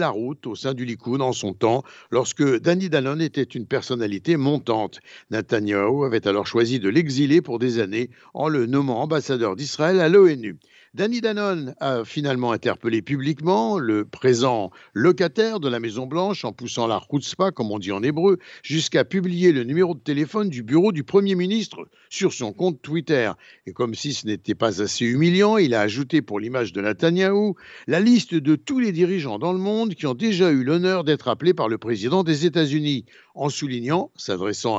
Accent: French